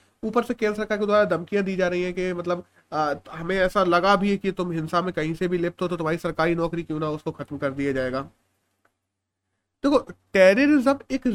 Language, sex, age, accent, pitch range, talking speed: Hindi, male, 30-49, native, 170-225 Hz, 225 wpm